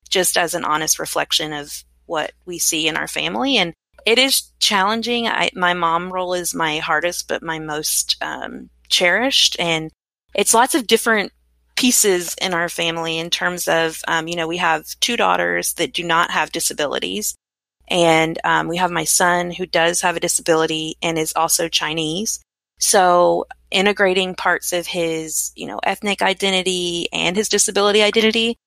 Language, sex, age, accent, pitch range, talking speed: English, female, 30-49, American, 160-190 Hz, 165 wpm